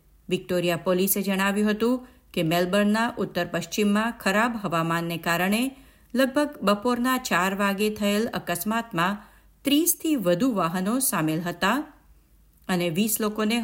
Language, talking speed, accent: Gujarati, 110 wpm, native